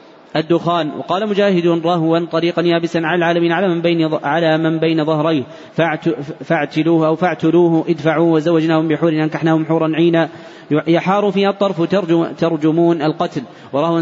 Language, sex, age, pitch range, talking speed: Arabic, male, 30-49, 155-170 Hz, 140 wpm